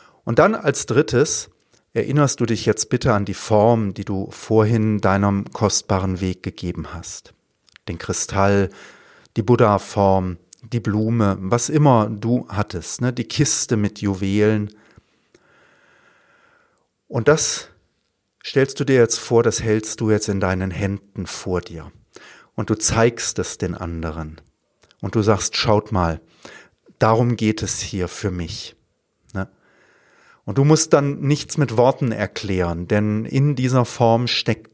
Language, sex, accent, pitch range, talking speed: German, male, German, 95-125 Hz, 140 wpm